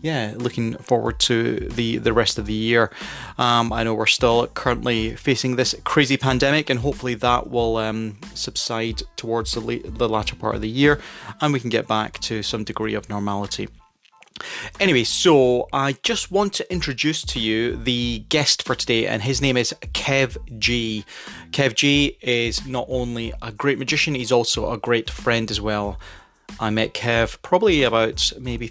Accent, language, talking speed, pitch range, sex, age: British, English, 180 wpm, 115-135 Hz, male, 30-49